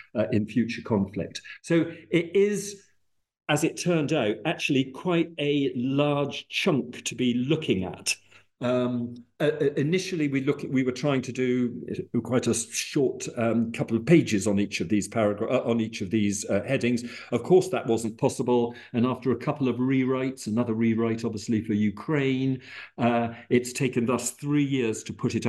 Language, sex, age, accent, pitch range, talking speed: English, male, 50-69, British, 115-145 Hz, 175 wpm